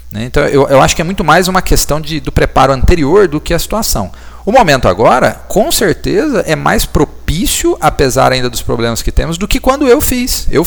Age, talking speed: 40-59, 215 wpm